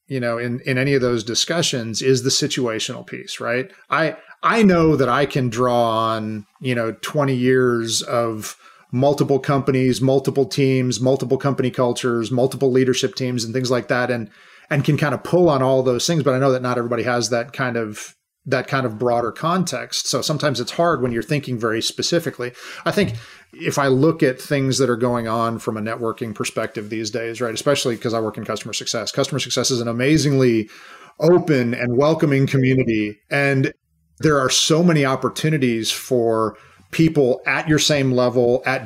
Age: 40-59